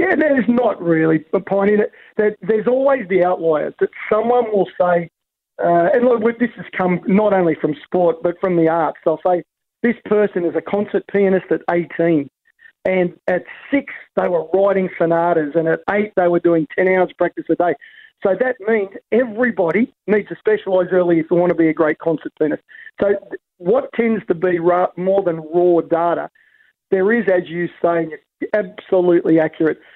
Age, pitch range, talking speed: 40-59, 170-205 Hz, 185 wpm